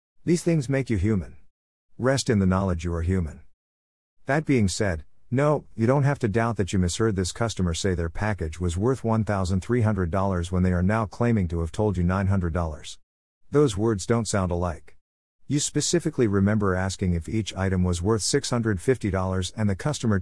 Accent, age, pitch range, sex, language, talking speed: American, 50-69, 90-115 Hz, male, English, 180 wpm